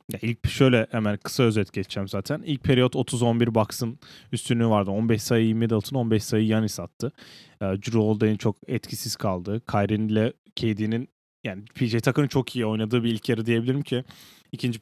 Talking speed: 160 wpm